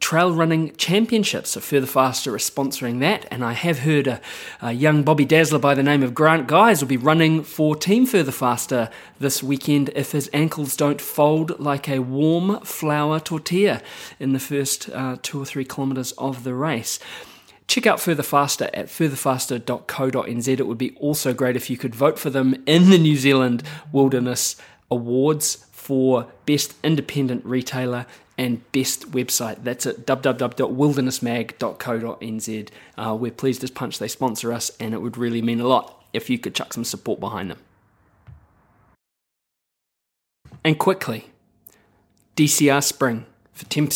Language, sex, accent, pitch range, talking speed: English, male, Australian, 120-150 Hz, 155 wpm